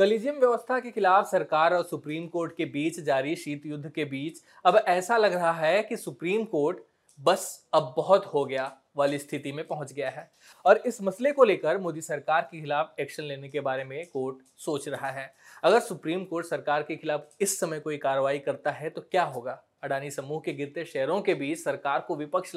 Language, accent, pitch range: Hindi, native, 145-190 Hz